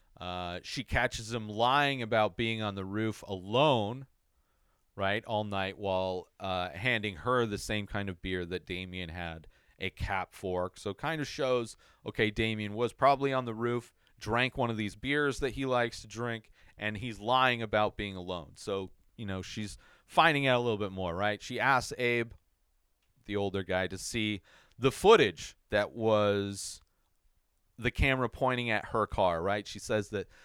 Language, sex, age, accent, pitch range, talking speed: English, male, 40-59, American, 95-125 Hz, 175 wpm